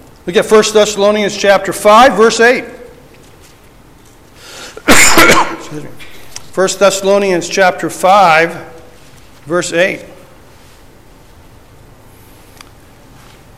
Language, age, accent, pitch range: English, 40-59, American, 165-225 Hz